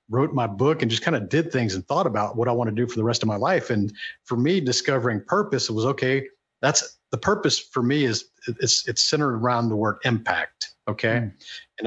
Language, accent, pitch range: English, American, 110-140 Hz